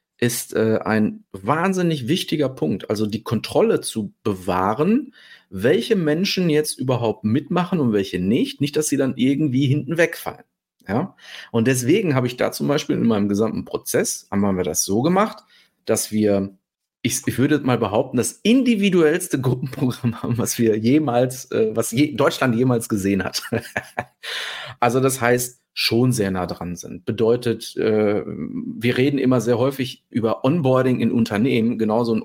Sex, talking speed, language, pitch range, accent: male, 155 wpm, German, 110-150 Hz, German